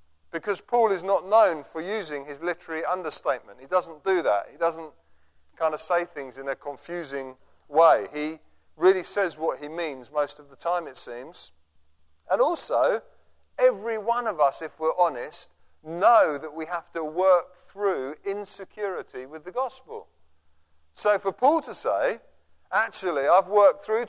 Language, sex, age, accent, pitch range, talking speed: English, male, 40-59, British, 135-195 Hz, 160 wpm